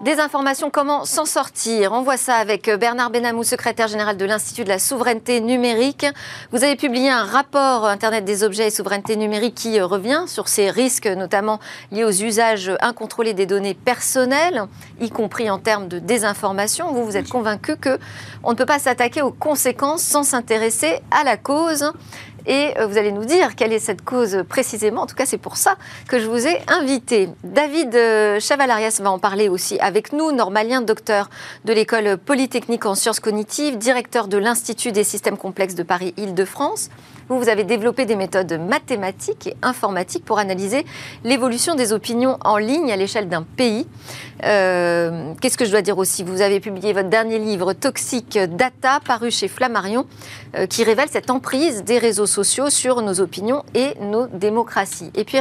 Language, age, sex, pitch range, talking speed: French, 40-59, female, 205-255 Hz, 175 wpm